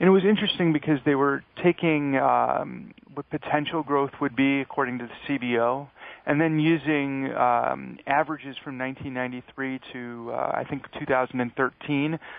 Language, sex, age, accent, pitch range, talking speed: English, male, 40-59, American, 125-145 Hz, 145 wpm